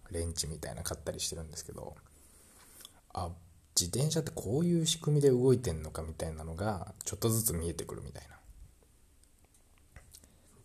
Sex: male